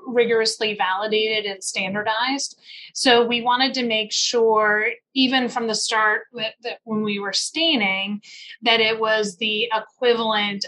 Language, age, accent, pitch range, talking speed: English, 30-49, American, 205-230 Hz, 135 wpm